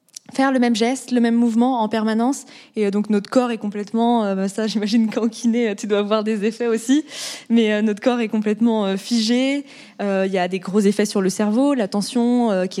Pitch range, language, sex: 205-250 Hz, French, female